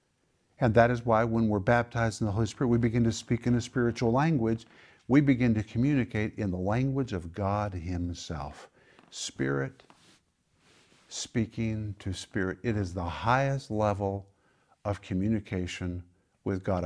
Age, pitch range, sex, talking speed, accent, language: 50-69, 100-120 Hz, male, 150 wpm, American, English